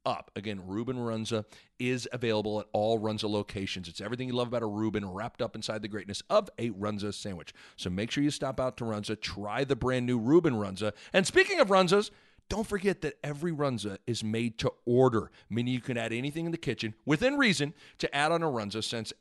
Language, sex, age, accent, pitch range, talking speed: English, male, 40-59, American, 110-150 Hz, 215 wpm